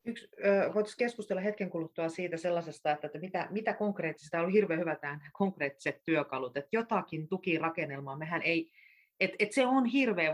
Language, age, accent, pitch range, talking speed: Finnish, 30-49, native, 145-190 Hz, 170 wpm